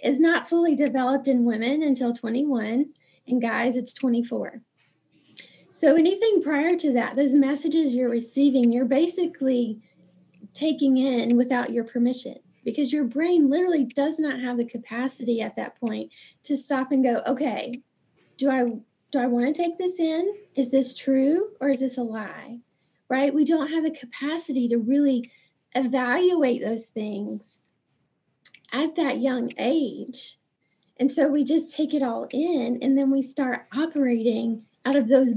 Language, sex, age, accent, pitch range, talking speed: English, female, 20-39, American, 235-285 Hz, 155 wpm